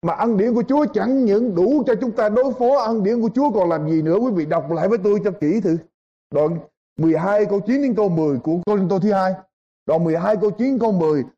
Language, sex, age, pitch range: Vietnamese, male, 20-39, 205-280 Hz